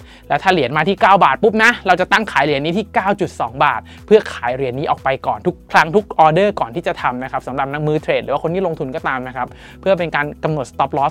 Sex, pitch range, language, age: male, 135-175 Hz, Thai, 20-39